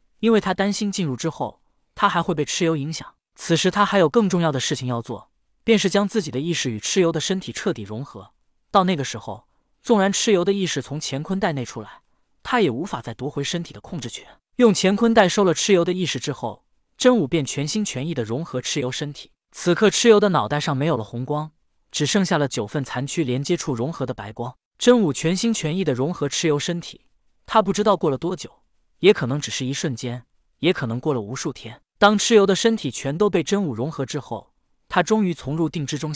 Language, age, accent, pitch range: Chinese, 20-39, native, 135-195 Hz